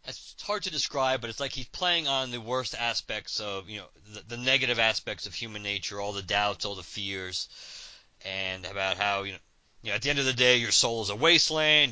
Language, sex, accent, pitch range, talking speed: English, male, American, 100-130 Hz, 230 wpm